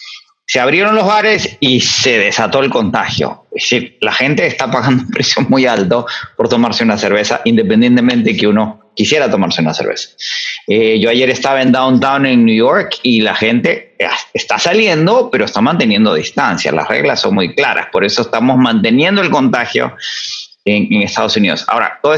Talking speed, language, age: 180 wpm, English, 40-59